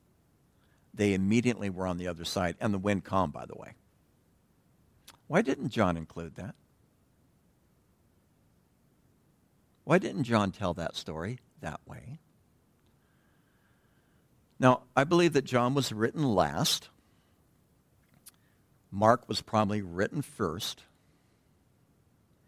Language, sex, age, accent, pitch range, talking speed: English, male, 60-79, American, 115-160 Hz, 105 wpm